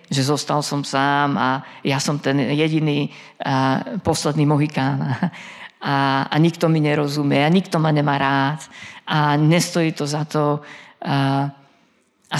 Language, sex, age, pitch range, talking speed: Slovak, female, 40-59, 140-165 Hz, 140 wpm